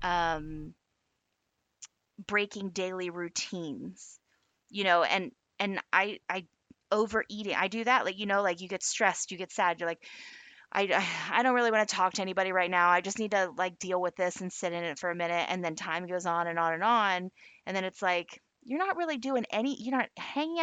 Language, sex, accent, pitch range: English, female, American, 185-240 Hz